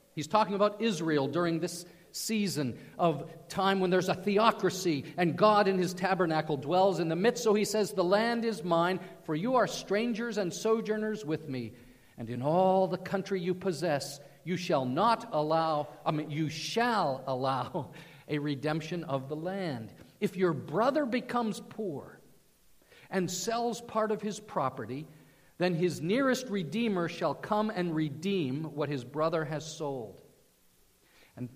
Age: 50-69